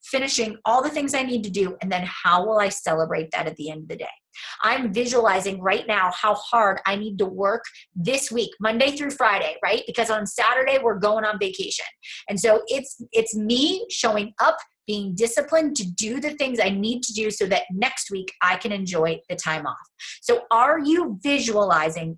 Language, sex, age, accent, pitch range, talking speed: English, female, 30-49, American, 200-280 Hz, 205 wpm